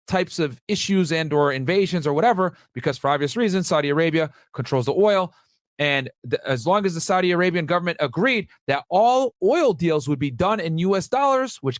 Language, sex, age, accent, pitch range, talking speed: English, male, 40-59, American, 135-185 Hz, 185 wpm